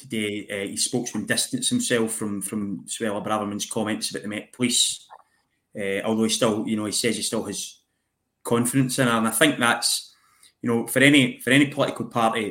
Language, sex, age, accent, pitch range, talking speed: English, male, 20-39, British, 110-130 Hz, 195 wpm